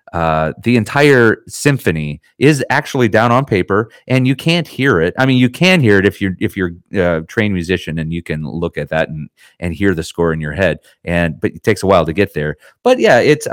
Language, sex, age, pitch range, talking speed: English, male, 30-49, 80-110 Hz, 240 wpm